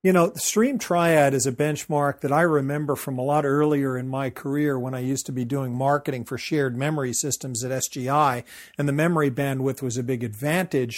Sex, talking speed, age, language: male, 215 wpm, 40-59, English